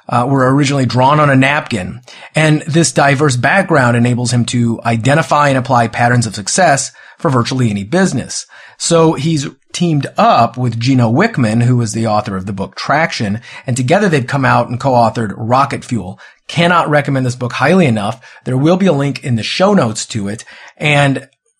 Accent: American